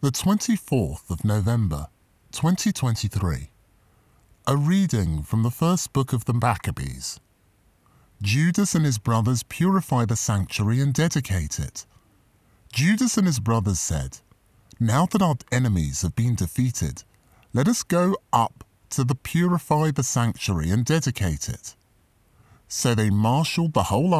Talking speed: 130 wpm